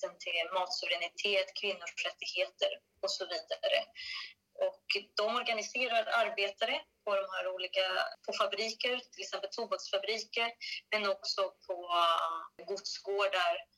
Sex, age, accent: female, 20-39, native